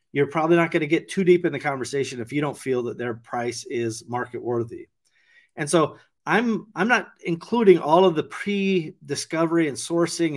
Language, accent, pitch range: English, American, 125-170 Hz